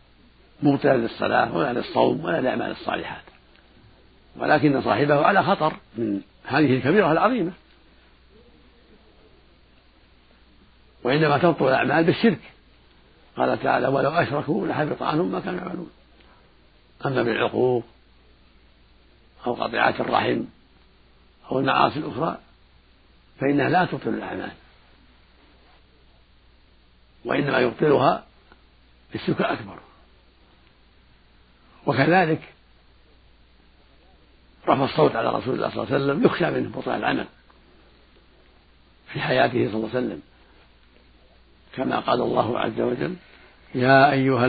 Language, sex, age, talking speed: Arabic, male, 60-79, 95 wpm